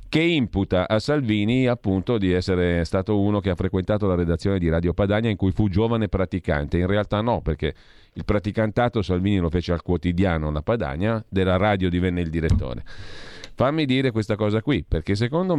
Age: 40-59